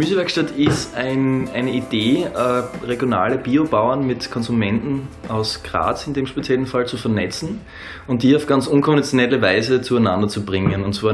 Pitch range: 105-130 Hz